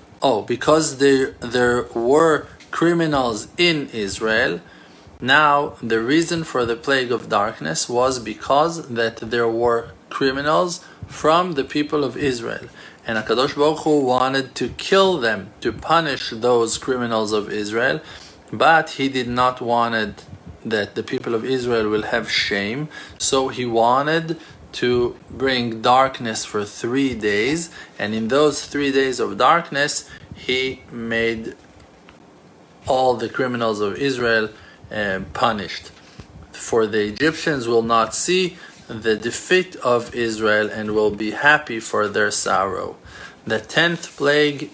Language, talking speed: English, 135 wpm